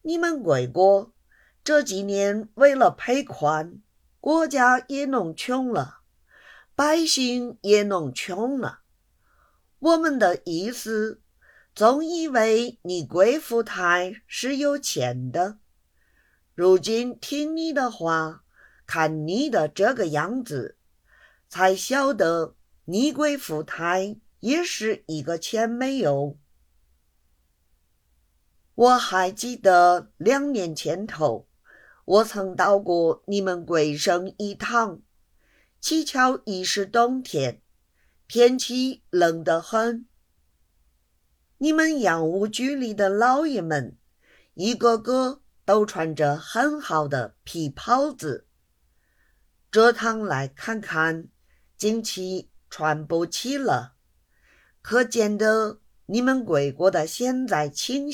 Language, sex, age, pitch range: Chinese, female, 50-69, 160-250 Hz